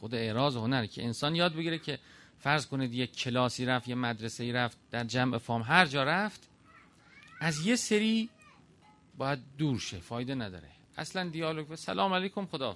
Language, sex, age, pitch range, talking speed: Persian, male, 40-59, 125-165 Hz, 170 wpm